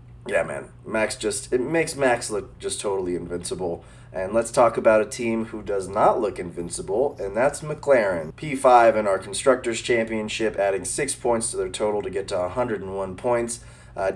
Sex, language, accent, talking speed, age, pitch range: male, English, American, 180 wpm, 20-39, 100-130 Hz